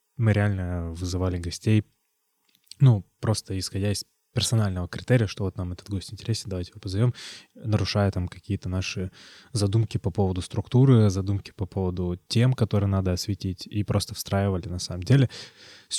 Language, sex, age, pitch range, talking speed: Russian, male, 20-39, 100-115 Hz, 155 wpm